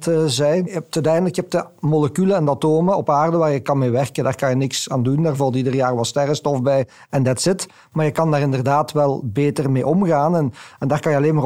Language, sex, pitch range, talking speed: Dutch, male, 125-155 Hz, 265 wpm